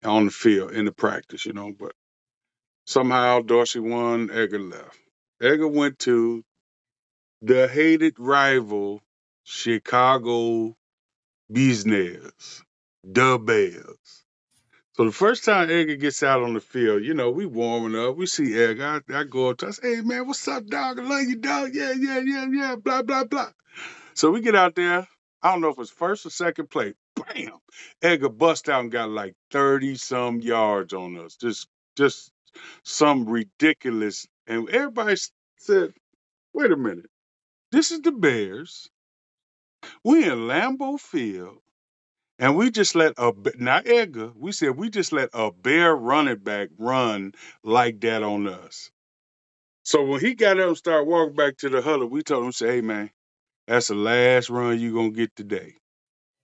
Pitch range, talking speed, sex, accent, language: 115-185 Hz, 165 wpm, male, American, English